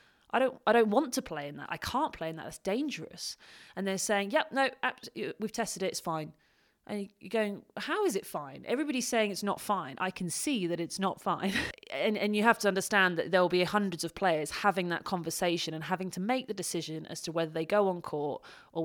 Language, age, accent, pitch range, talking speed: English, 30-49, British, 165-210 Hz, 240 wpm